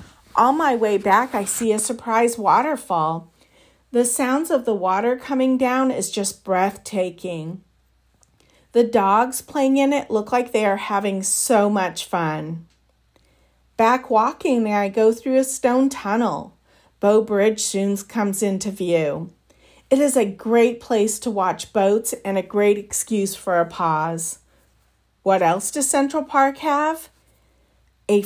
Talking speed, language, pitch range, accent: 145 wpm, English, 185-245 Hz, American